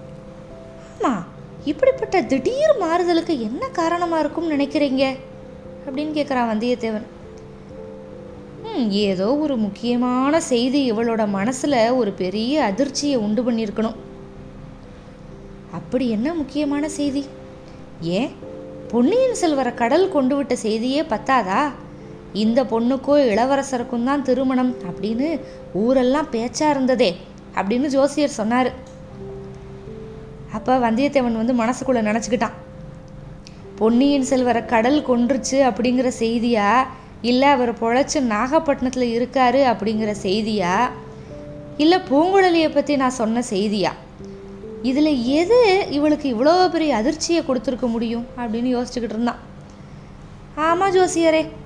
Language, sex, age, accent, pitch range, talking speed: Tamil, female, 20-39, native, 230-295 Hz, 95 wpm